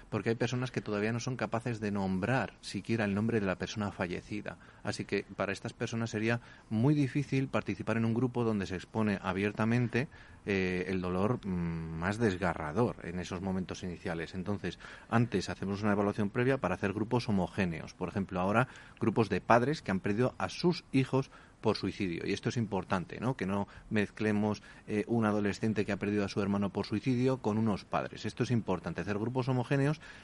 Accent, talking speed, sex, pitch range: Spanish, 190 wpm, male, 95-120 Hz